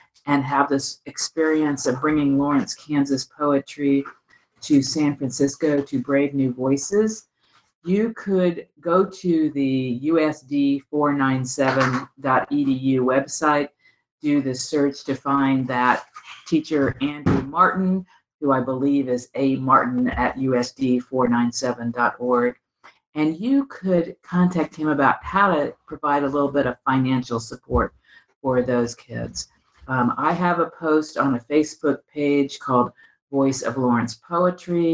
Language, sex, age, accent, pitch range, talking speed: English, female, 50-69, American, 130-165 Hz, 120 wpm